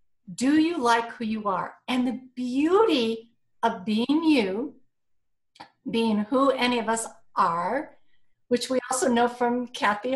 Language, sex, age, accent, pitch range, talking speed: English, female, 50-69, American, 220-270 Hz, 140 wpm